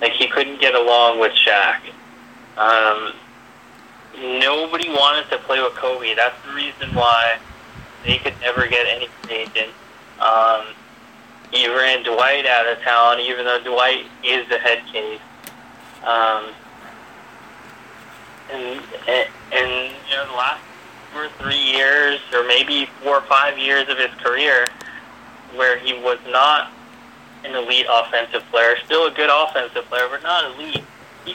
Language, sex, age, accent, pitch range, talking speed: English, male, 20-39, American, 115-135 Hz, 145 wpm